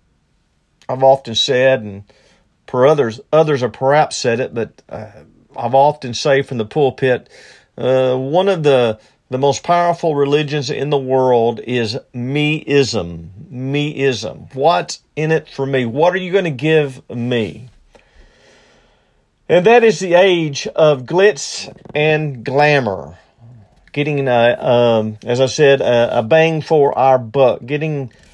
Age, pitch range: 50-69, 120-155 Hz